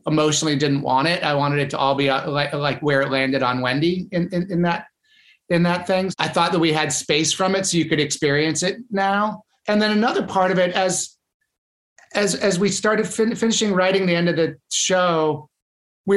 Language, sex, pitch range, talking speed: English, male, 150-180 Hz, 210 wpm